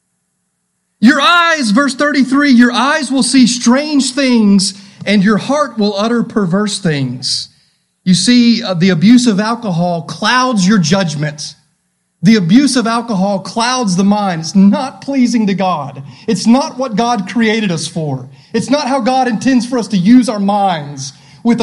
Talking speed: 160 wpm